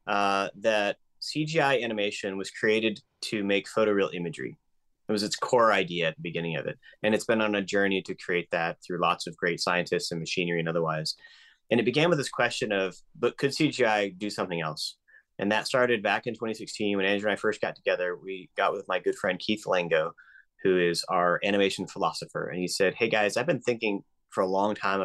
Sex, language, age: male, English, 30-49